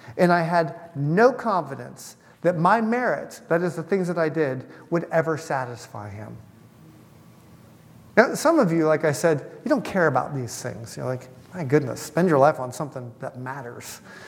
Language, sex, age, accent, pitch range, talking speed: English, male, 40-59, American, 155-200 Hz, 180 wpm